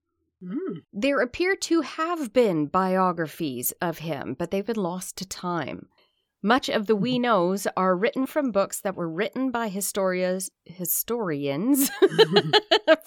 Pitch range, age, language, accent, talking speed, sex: 170-255 Hz, 30-49, English, American, 130 wpm, female